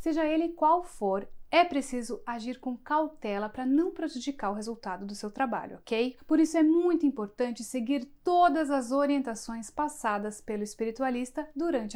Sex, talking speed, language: female, 155 wpm, Portuguese